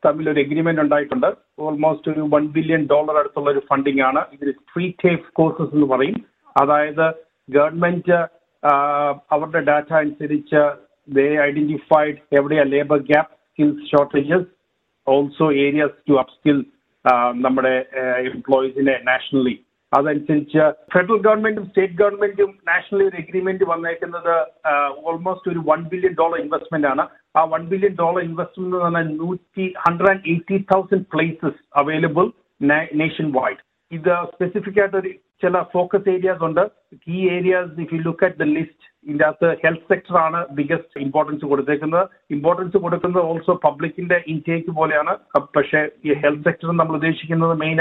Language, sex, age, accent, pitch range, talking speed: Malayalam, male, 50-69, native, 145-180 Hz, 140 wpm